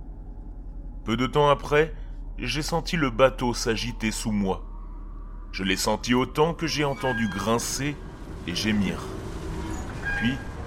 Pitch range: 90-125 Hz